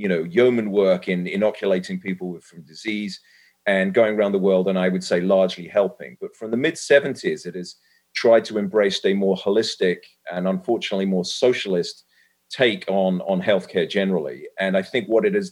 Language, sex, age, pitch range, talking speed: English, male, 30-49, 95-130 Hz, 185 wpm